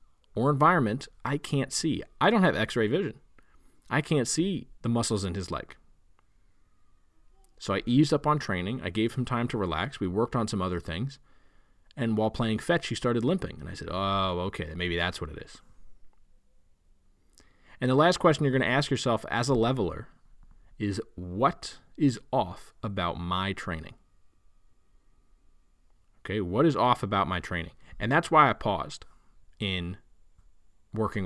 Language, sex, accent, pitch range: English, male, American, 90-120 Hz